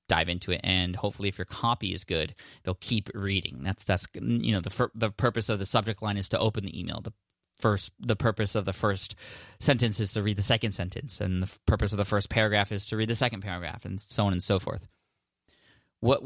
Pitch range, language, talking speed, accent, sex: 100-120 Hz, English, 235 wpm, American, male